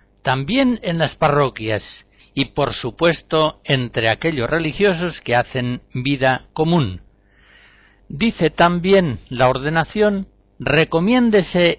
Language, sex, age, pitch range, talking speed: Spanish, male, 60-79, 125-175 Hz, 95 wpm